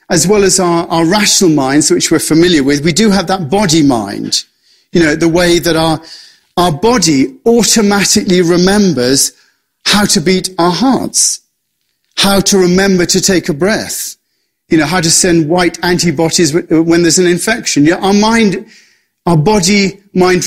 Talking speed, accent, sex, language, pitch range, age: 165 wpm, British, male, English, 165-195 Hz, 40-59